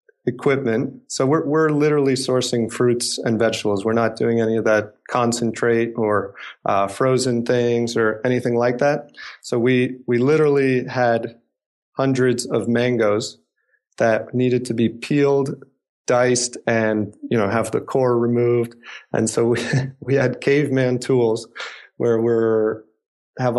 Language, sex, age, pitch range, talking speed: English, male, 40-59, 110-130 Hz, 140 wpm